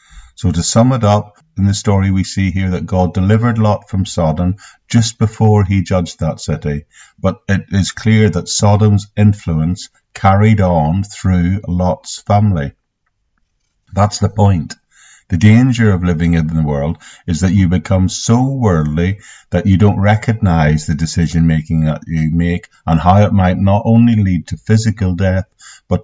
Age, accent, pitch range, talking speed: 50-69, British, 90-105 Hz, 165 wpm